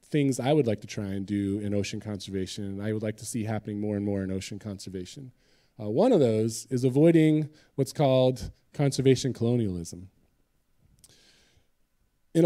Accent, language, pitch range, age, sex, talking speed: American, English, 105-135 Hz, 20-39, male, 170 wpm